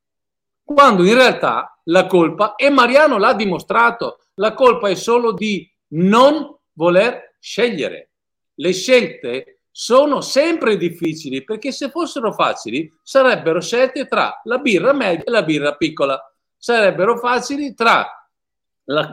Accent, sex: native, male